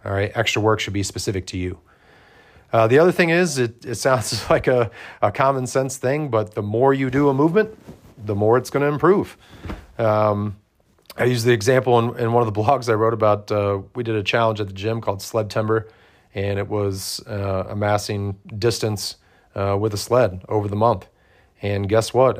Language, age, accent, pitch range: English, 30-49, American, 100-120 Hz